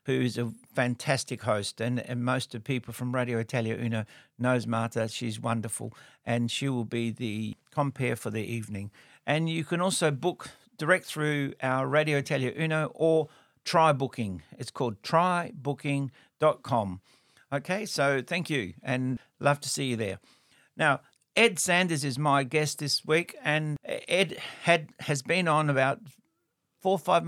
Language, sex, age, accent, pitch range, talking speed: English, male, 60-79, Australian, 125-160 Hz, 160 wpm